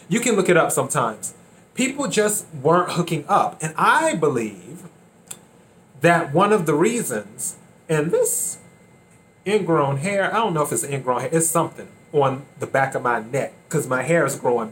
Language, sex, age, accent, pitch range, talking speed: English, male, 30-49, American, 145-175 Hz, 175 wpm